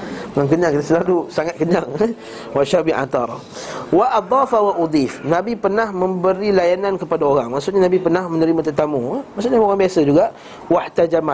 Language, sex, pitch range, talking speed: Malay, male, 140-180 Hz, 140 wpm